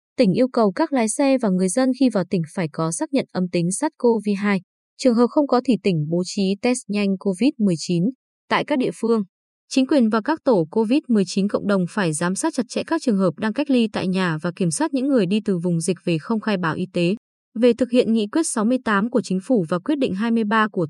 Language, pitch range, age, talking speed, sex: Vietnamese, 190-255 Hz, 20-39, 240 wpm, female